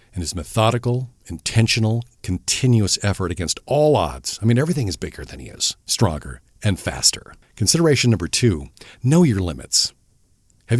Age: 50-69